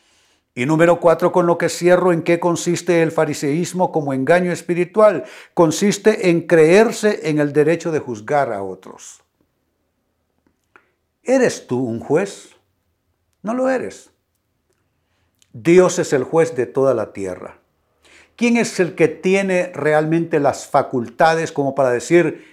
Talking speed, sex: 135 wpm, male